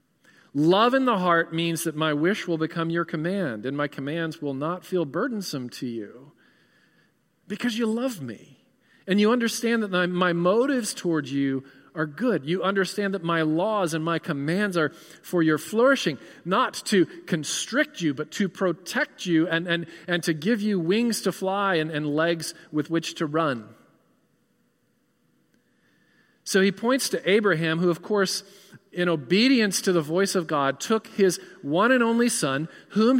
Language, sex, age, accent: English, male, 40-59, American